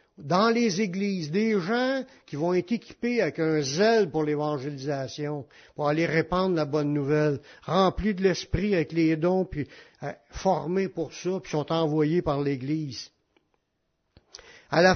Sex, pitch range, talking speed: male, 150-195 Hz, 150 wpm